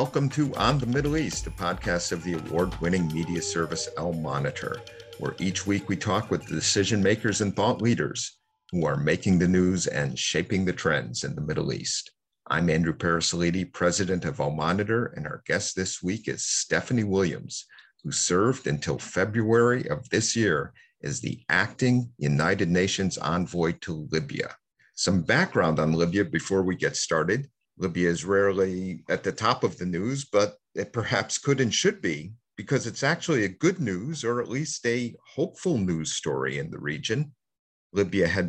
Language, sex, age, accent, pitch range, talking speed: English, male, 50-69, American, 85-120 Hz, 175 wpm